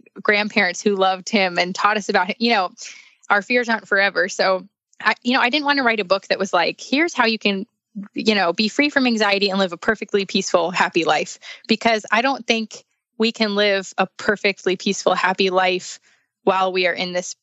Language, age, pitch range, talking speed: English, 10-29, 185-215 Hz, 215 wpm